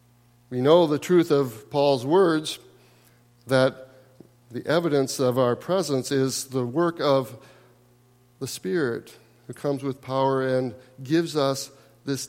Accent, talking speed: American, 130 wpm